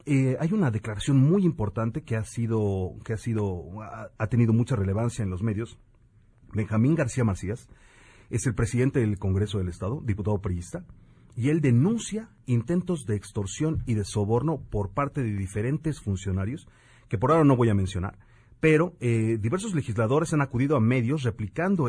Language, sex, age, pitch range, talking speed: Spanish, male, 40-59, 105-150 Hz, 165 wpm